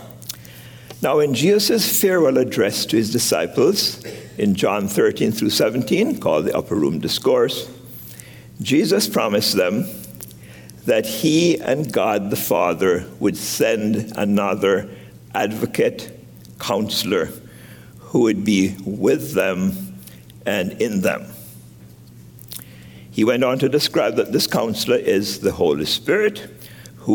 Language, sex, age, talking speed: English, male, 60-79, 115 wpm